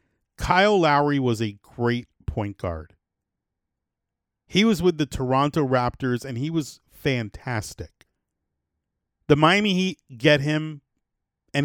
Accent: American